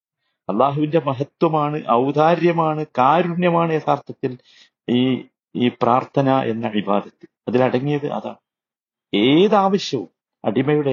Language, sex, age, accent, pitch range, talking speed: Malayalam, male, 50-69, native, 130-175 Hz, 70 wpm